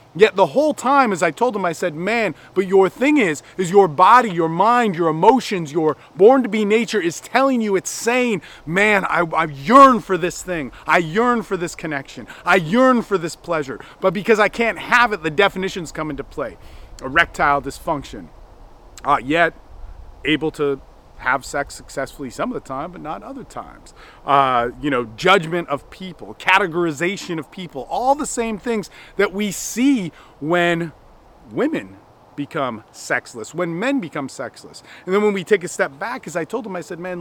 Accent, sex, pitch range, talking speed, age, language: American, male, 155-210 Hz, 185 wpm, 30-49, English